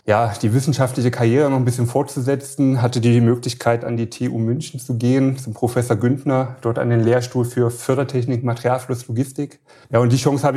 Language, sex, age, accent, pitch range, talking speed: German, male, 30-49, German, 120-135 Hz, 185 wpm